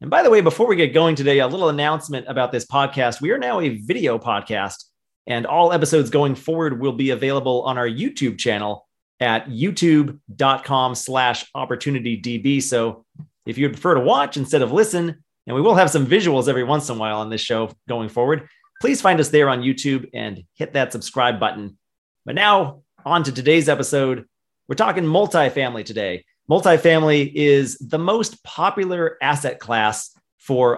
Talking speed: 175 wpm